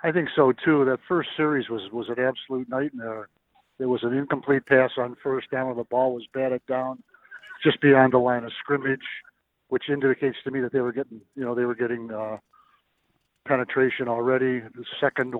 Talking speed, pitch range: 195 wpm, 120-135 Hz